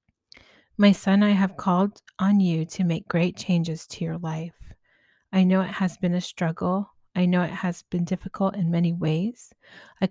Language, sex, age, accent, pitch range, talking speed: English, female, 30-49, American, 170-195 Hz, 185 wpm